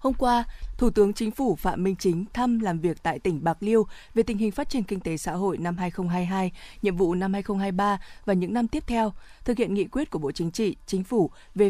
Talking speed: 240 wpm